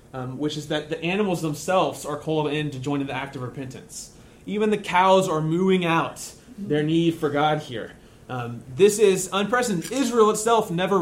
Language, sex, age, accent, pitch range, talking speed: English, male, 30-49, American, 130-175 Hz, 190 wpm